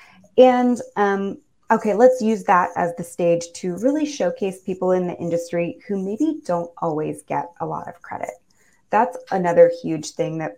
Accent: American